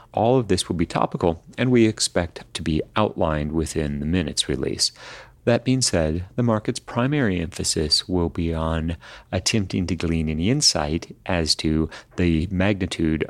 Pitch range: 80-110 Hz